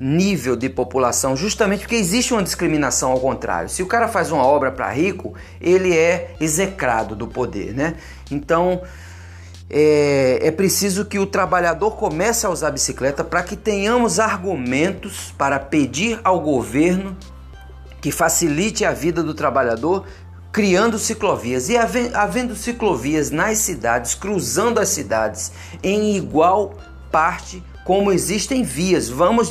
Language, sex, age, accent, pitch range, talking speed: Portuguese, male, 40-59, Brazilian, 125-195 Hz, 135 wpm